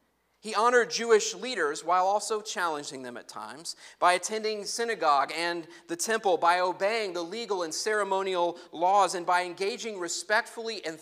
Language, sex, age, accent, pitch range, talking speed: English, male, 30-49, American, 160-220 Hz, 150 wpm